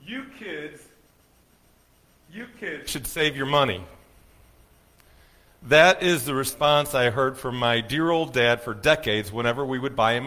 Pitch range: 120-175 Hz